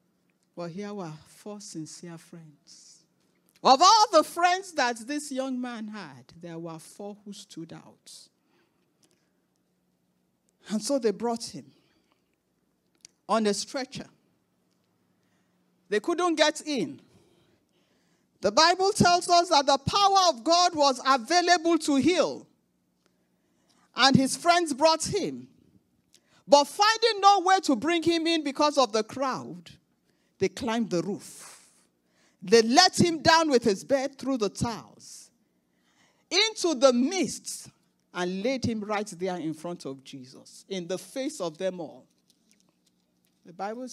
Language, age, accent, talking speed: English, 50-69, Nigerian, 130 wpm